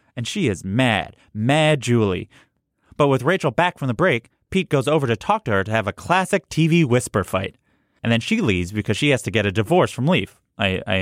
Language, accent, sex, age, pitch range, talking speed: English, American, male, 30-49, 100-145 Hz, 225 wpm